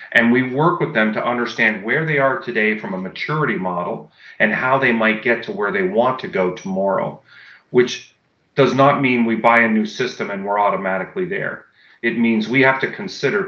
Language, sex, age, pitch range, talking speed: English, male, 40-59, 110-145 Hz, 205 wpm